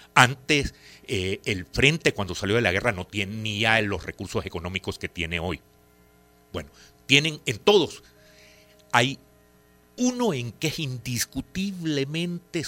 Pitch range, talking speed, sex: 85-130 Hz, 130 wpm, male